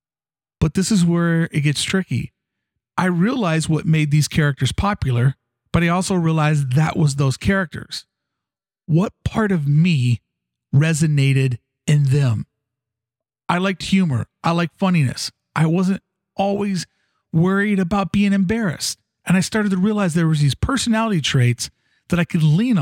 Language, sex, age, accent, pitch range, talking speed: English, male, 40-59, American, 135-190 Hz, 145 wpm